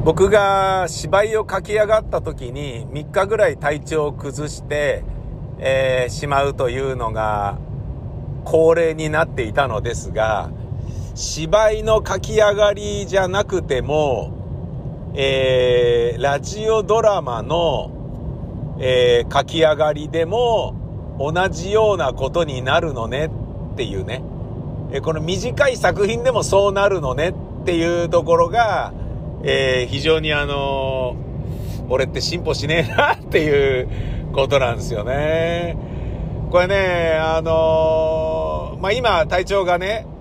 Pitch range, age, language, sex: 130-190 Hz, 50-69, Japanese, male